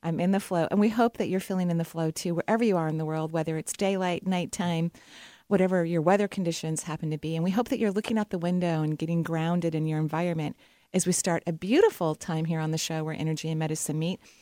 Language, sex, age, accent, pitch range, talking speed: English, female, 30-49, American, 165-205 Hz, 255 wpm